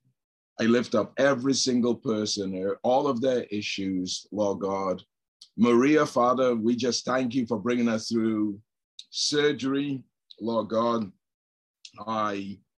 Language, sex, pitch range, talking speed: English, male, 100-120 Hz, 120 wpm